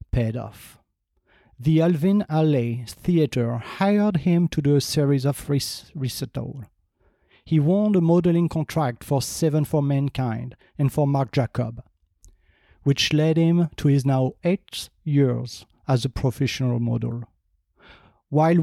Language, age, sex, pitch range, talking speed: English, 40-59, male, 125-155 Hz, 130 wpm